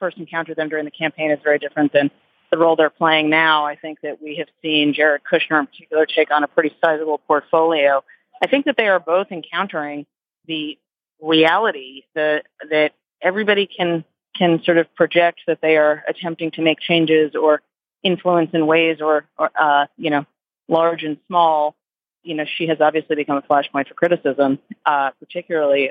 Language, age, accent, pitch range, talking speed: English, 30-49, American, 145-165 Hz, 185 wpm